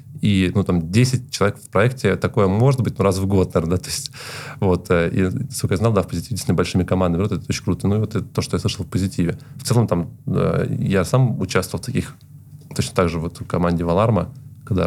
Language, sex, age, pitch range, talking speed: Russian, male, 20-39, 95-130 Hz, 230 wpm